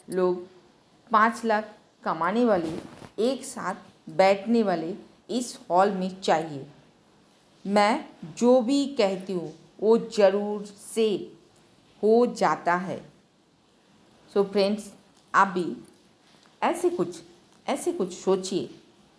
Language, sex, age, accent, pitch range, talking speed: Hindi, female, 50-69, native, 175-215 Hz, 100 wpm